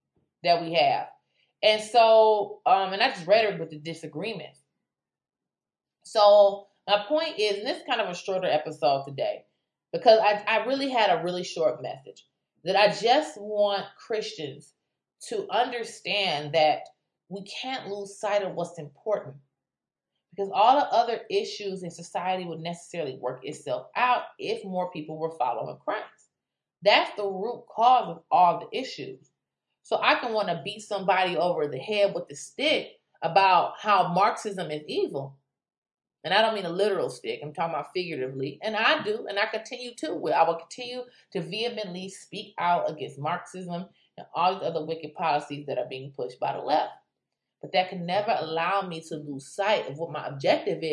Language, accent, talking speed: English, American, 175 wpm